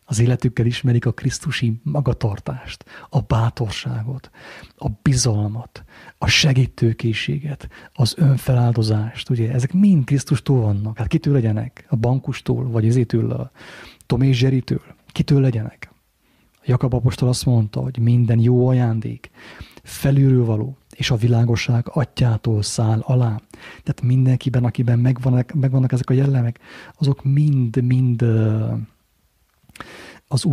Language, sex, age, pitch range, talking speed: English, male, 30-49, 115-135 Hz, 115 wpm